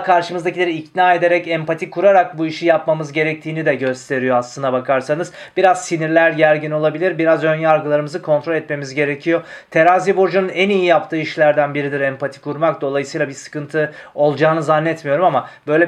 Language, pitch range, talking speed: Turkish, 150-180 Hz, 145 wpm